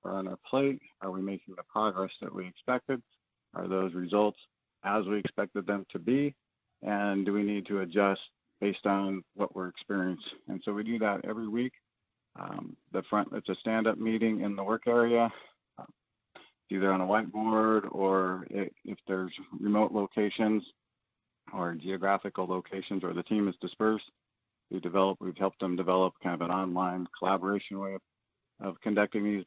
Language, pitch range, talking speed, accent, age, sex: English, 95-105 Hz, 170 wpm, American, 40-59, male